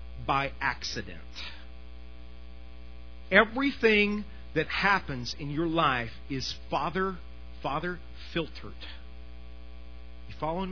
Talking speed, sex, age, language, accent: 80 wpm, male, 40-59, English, American